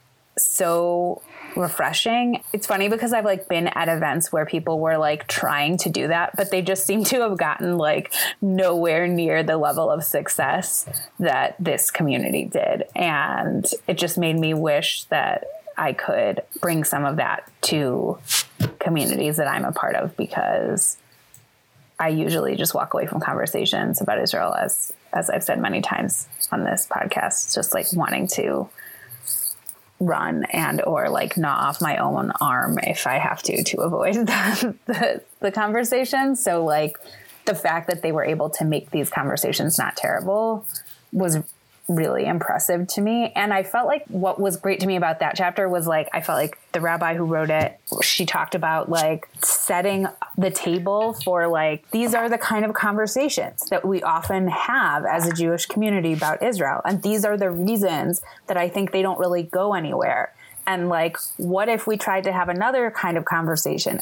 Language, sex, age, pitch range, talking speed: English, female, 20-39, 165-205 Hz, 175 wpm